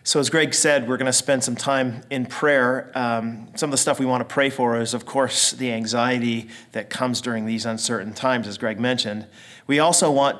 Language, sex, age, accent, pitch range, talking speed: English, male, 40-59, American, 115-135 Hz, 225 wpm